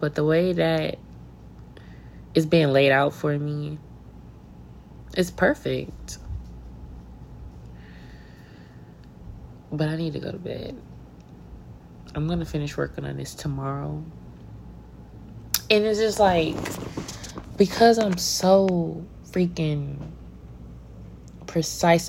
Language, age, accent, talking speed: English, 20-39, American, 100 wpm